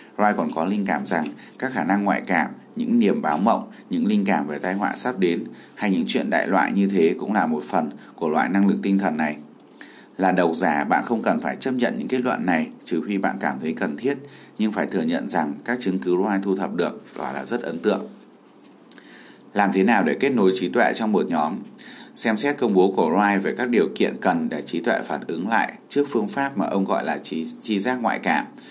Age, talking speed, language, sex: 20-39, 245 wpm, Vietnamese, male